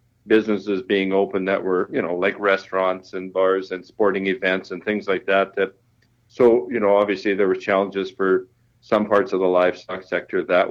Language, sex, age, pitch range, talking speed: English, male, 50-69, 95-110 Hz, 190 wpm